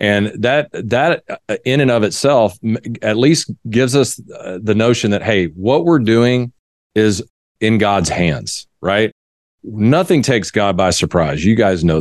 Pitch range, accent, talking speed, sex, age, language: 95-125 Hz, American, 155 wpm, male, 40-59, English